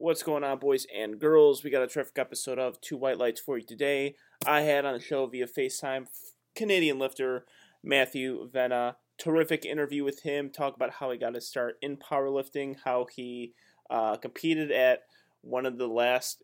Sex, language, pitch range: male, English, 120-145 Hz